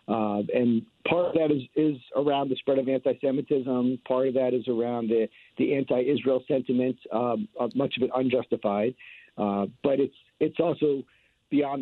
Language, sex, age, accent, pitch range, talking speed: English, male, 50-69, American, 120-150 Hz, 160 wpm